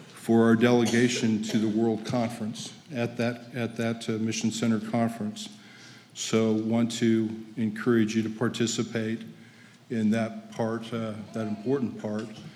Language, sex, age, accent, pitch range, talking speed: English, male, 50-69, American, 110-120 Hz, 140 wpm